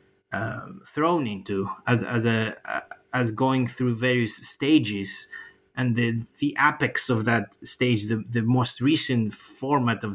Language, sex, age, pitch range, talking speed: English, male, 30-49, 110-130 Hz, 140 wpm